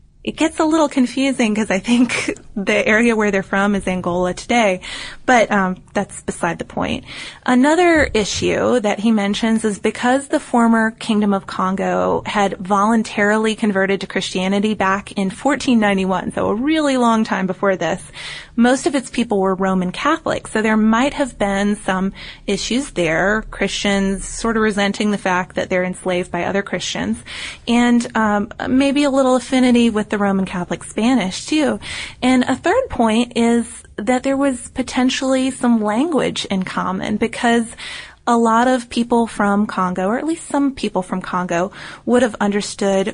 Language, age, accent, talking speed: English, 20-39, American, 165 wpm